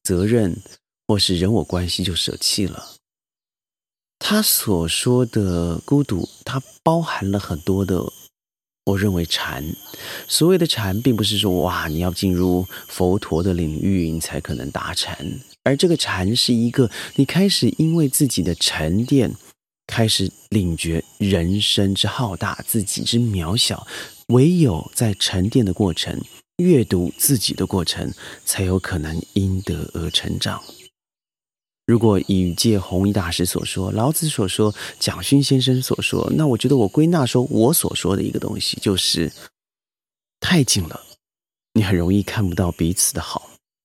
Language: Chinese